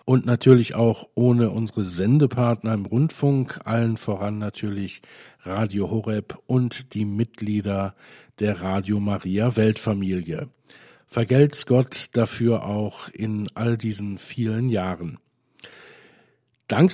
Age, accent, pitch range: 50-69, German, 105-130 Hz